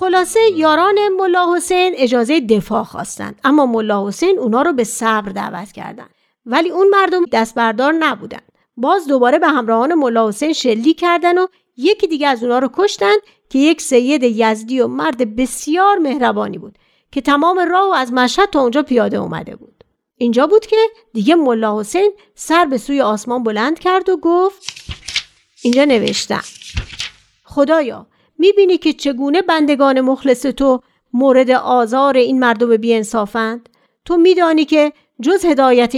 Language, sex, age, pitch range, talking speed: Persian, female, 40-59, 240-335 Hz, 140 wpm